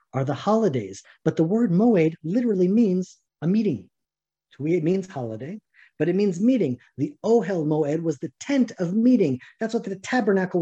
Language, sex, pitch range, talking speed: English, male, 150-200 Hz, 170 wpm